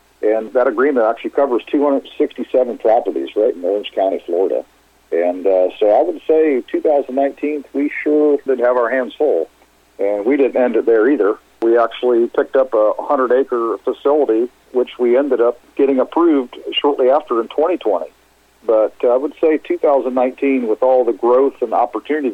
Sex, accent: male, American